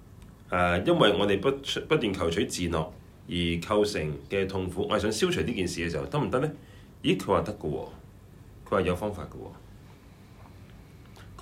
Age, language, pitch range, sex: 30-49, Chinese, 80-105 Hz, male